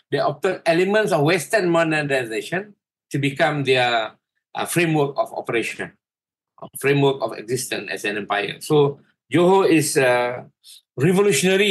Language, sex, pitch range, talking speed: English, male, 135-175 Hz, 135 wpm